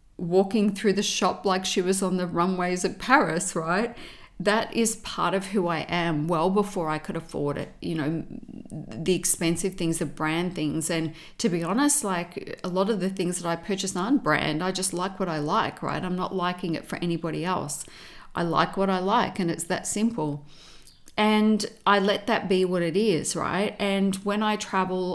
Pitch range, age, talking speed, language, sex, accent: 165-205 Hz, 40-59, 205 wpm, English, female, Australian